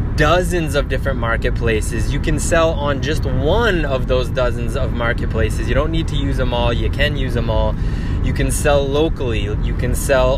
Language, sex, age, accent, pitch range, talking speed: English, male, 20-39, American, 95-130 Hz, 195 wpm